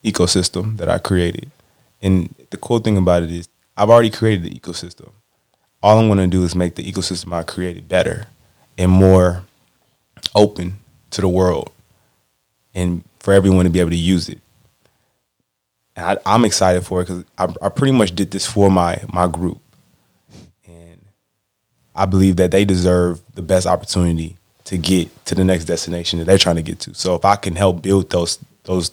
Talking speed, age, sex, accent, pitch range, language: 185 wpm, 20-39, male, American, 90-100 Hz, English